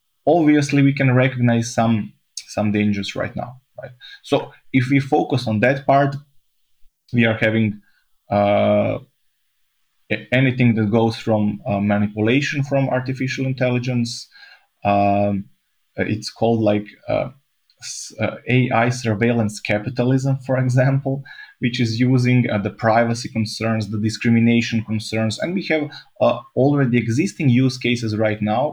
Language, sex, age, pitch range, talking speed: English, male, 20-39, 110-135 Hz, 125 wpm